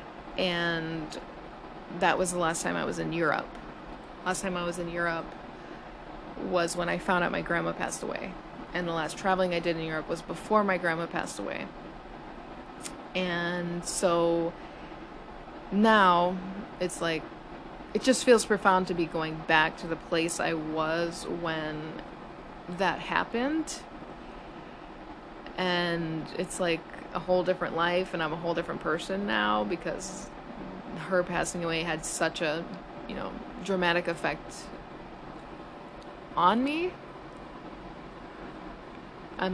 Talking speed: 135 wpm